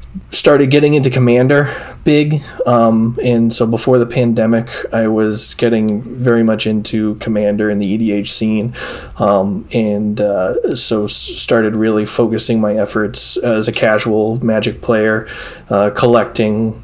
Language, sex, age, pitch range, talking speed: English, male, 20-39, 110-120 Hz, 135 wpm